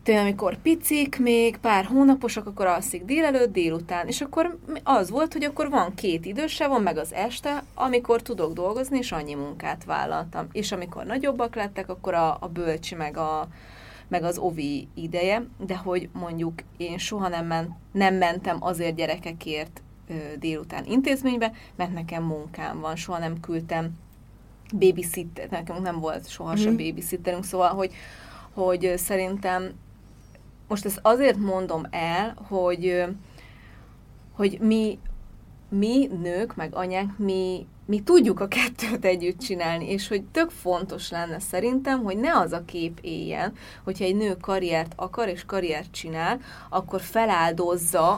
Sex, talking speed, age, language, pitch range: female, 140 wpm, 30-49, Hungarian, 165-215 Hz